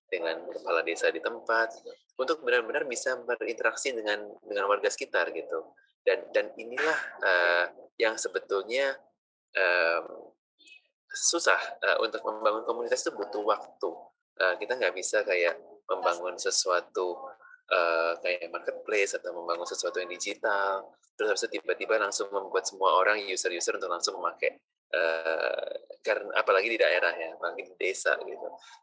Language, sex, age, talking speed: Indonesian, male, 20-39, 135 wpm